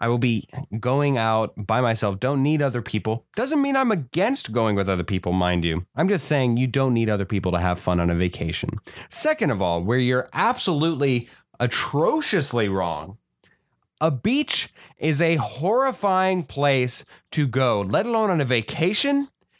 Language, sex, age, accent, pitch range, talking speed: English, male, 30-49, American, 110-150 Hz, 170 wpm